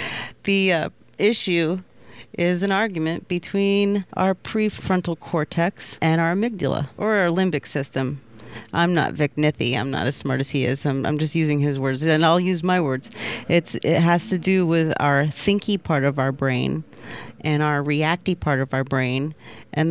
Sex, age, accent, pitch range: female, 30-49, American, 135-185 Hz